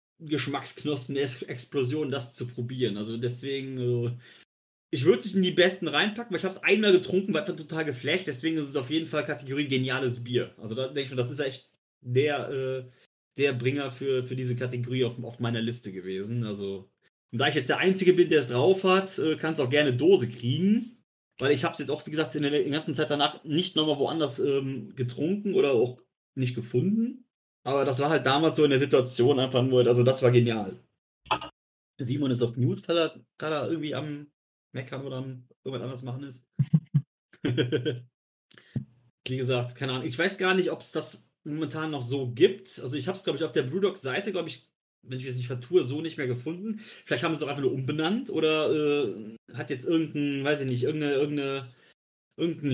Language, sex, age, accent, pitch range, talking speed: German, male, 30-49, German, 125-160 Hz, 200 wpm